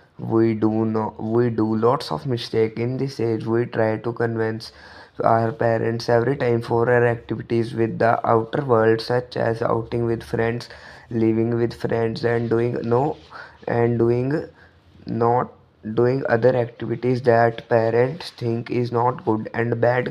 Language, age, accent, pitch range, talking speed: English, 20-39, Indian, 115-120 Hz, 150 wpm